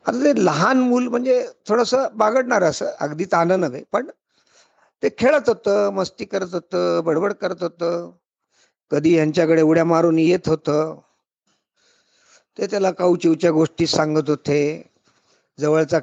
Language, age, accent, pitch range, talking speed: Marathi, 50-69, native, 160-230 Hz, 125 wpm